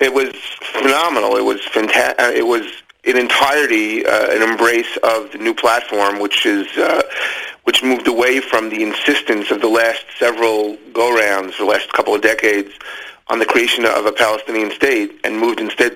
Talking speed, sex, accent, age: 175 wpm, male, American, 40-59